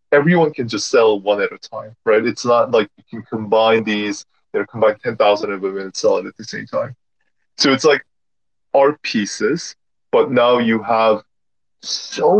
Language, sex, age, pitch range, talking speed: English, male, 20-39, 100-150 Hz, 190 wpm